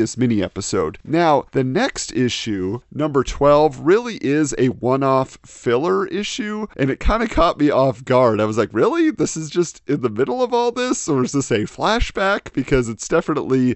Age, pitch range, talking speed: 40-59, 120-170 Hz, 190 wpm